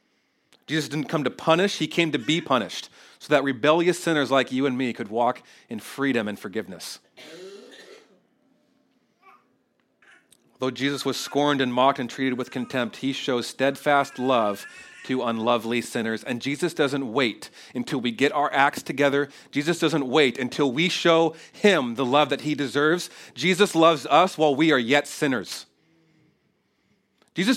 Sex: male